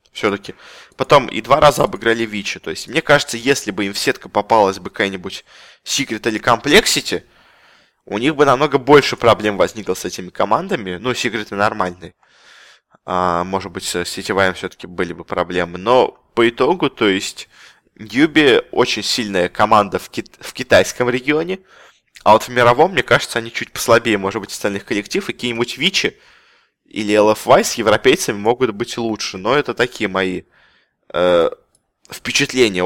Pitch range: 100-130 Hz